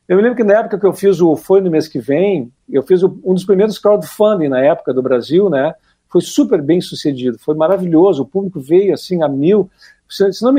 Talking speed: 230 wpm